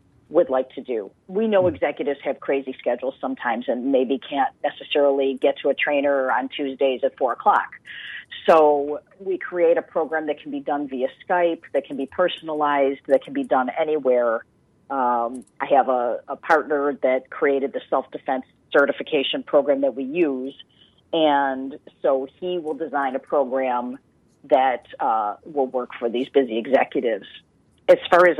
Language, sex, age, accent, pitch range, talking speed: English, female, 40-59, American, 135-165 Hz, 165 wpm